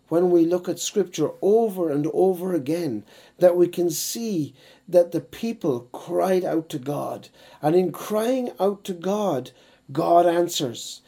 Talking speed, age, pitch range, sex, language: 150 wpm, 60-79, 155-200 Hz, male, English